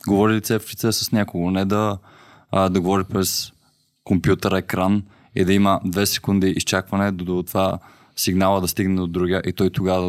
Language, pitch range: Bulgarian, 95-115 Hz